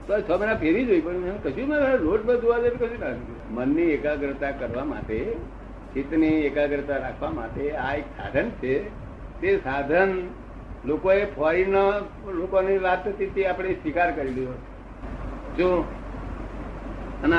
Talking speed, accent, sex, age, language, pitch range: 80 wpm, native, male, 60-79, Gujarati, 140-195 Hz